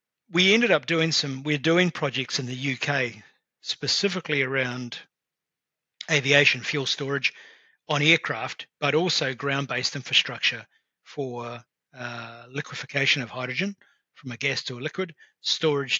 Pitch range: 125-145 Hz